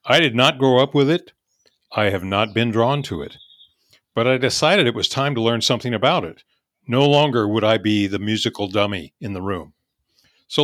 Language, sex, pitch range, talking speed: English, male, 110-140 Hz, 210 wpm